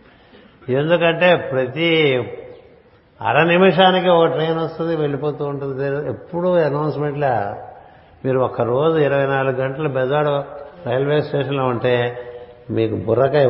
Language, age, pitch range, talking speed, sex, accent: Telugu, 60-79, 125-150 Hz, 100 wpm, male, native